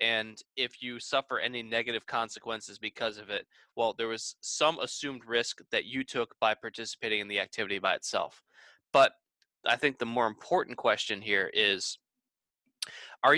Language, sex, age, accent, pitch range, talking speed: English, male, 20-39, American, 115-135 Hz, 160 wpm